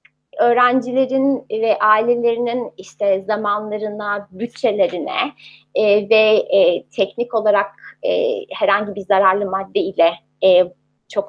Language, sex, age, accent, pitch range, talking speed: Turkish, female, 30-49, native, 200-260 Hz, 100 wpm